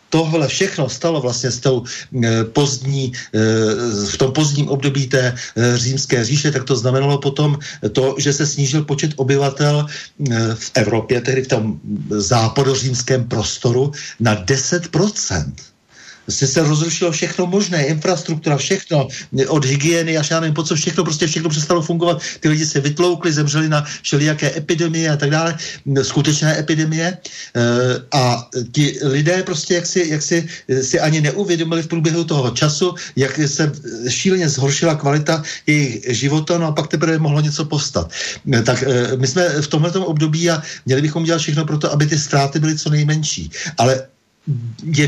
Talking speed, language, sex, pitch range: 150 wpm, Slovak, male, 130-160 Hz